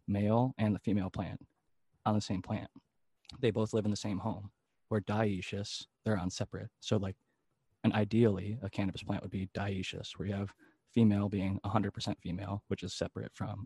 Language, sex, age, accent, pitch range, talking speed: English, male, 20-39, American, 100-115 Hz, 190 wpm